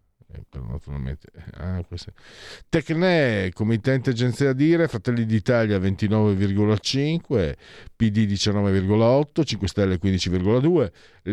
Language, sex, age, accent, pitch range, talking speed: Italian, male, 50-69, native, 95-130 Hz, 75 wpm